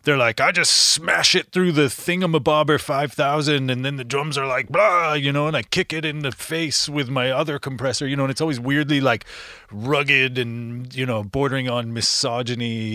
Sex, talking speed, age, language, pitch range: male, 210 wpm, 30-49, English, 110-140 Hz